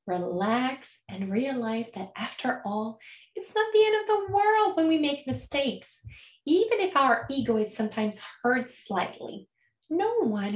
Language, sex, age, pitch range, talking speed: French, female, 20-39, 210-270 Hz, 155 wpm